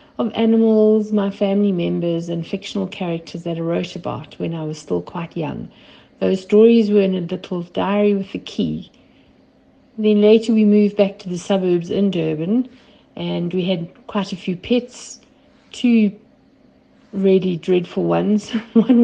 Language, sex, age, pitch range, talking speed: English, female, 60-79, 170-210 Hz, 160 wpm